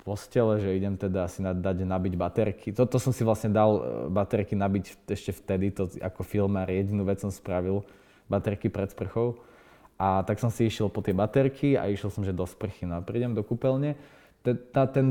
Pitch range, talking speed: 100-115 Hz, 185 wpm